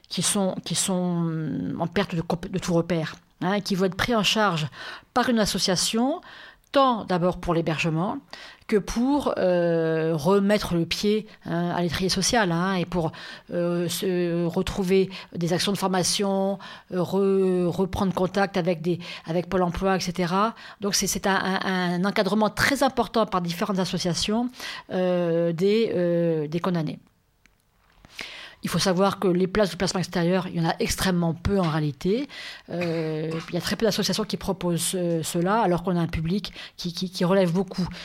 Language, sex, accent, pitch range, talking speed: French, female, French, 175-205 Hz, 170 wpm